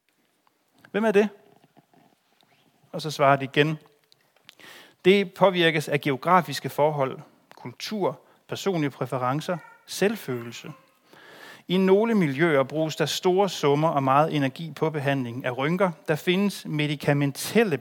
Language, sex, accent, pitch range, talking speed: Danish, male, native, 130-165 Hz, 115 wpm